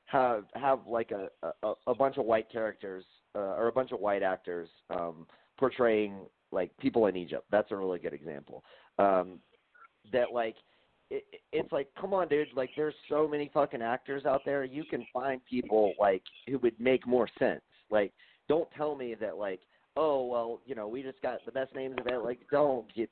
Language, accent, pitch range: English, American, 100-130 Hz